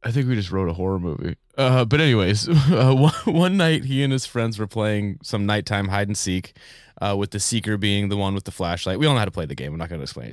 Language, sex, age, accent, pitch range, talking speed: English, male, 20-39, American, 95-125 Hz, 285 wpm